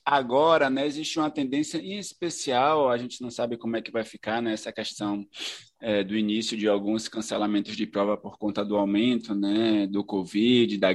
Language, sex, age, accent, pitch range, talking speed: Portuguese, male, 20-39, Brazilian, 125-175 Hz, 185 wpm